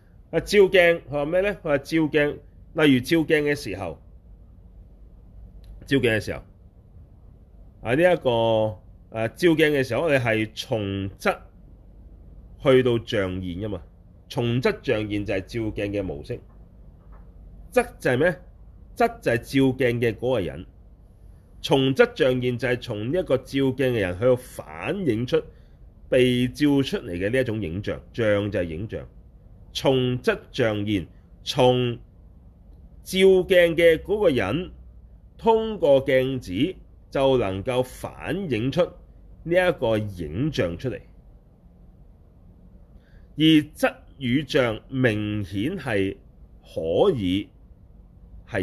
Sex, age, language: male, 30-49, Chinese